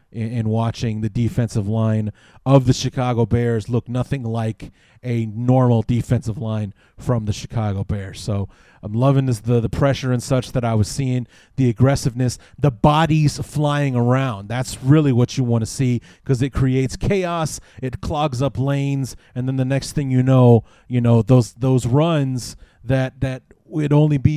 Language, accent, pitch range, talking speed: English, American, 115-135 Hz, 175 wpm